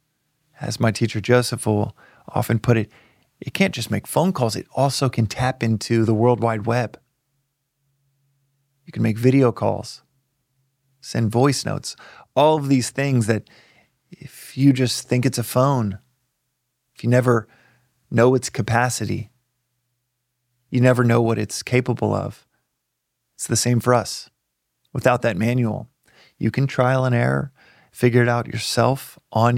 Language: English